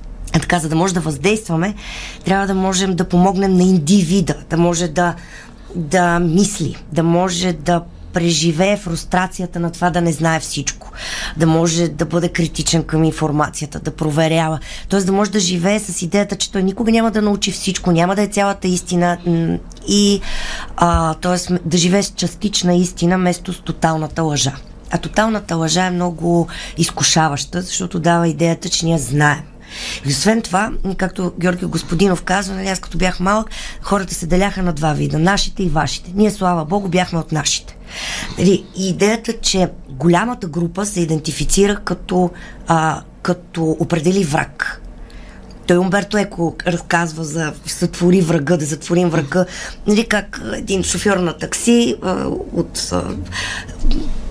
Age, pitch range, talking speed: 20-39, 165-190 Hz, 155 wpm